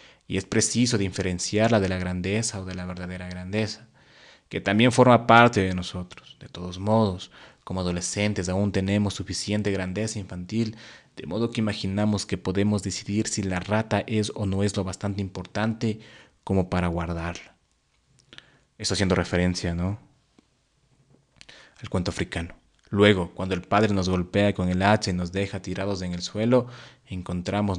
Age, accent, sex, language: 30-49, Mexican, male, Spanish